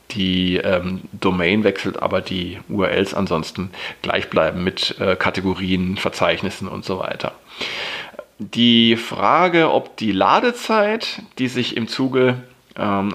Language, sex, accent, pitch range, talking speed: German, male, German, 100-125 Hz, 125 wpm